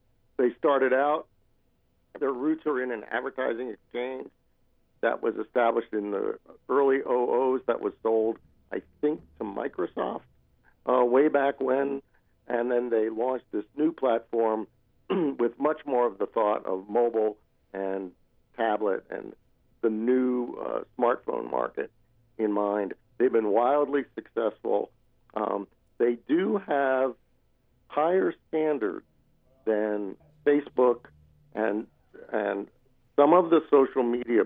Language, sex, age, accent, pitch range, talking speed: English, male, 50-69, American, 110-135 Hz, 125 wpm